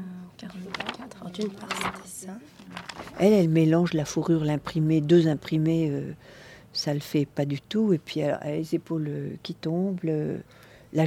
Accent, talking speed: French, 140 wpm